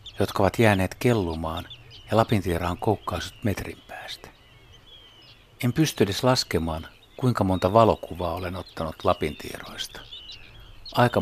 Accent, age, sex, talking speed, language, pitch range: native, 60-79, male, 105 wpm, Finnish, 90-115 Hz